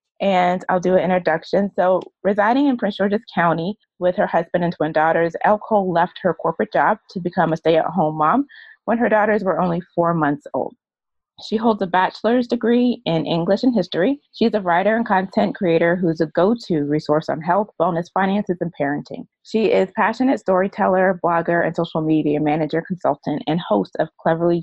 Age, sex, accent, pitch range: 20-39, female, American, 170-220 Hz